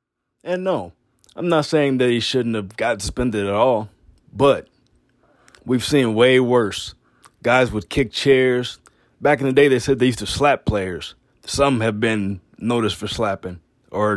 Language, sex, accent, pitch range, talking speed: English, male, American, 110-135 Hz, 170 wpm